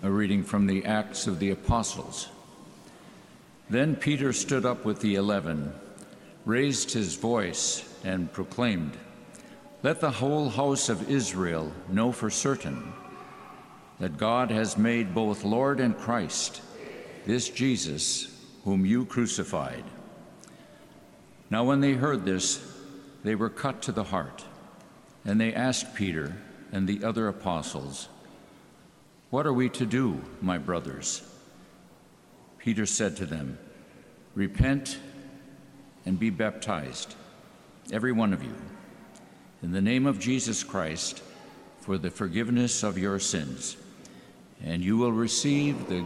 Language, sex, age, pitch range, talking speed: English, male, 60-79, 95-130 Hz, 125 wpm